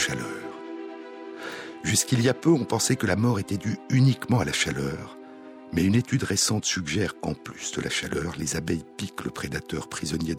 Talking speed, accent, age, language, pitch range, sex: 185 wpm, French, 60-79, French, 80-120 Hz, male